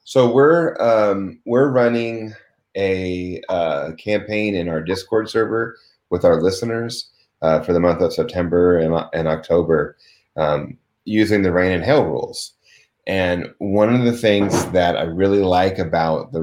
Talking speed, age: 155 wpm, 30-49